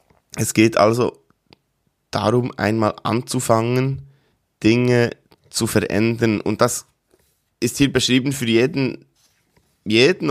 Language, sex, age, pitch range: German, male, 20-39, 100-120 Hz